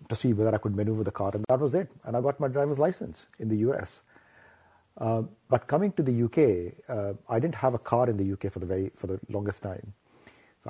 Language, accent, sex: English, Indian, male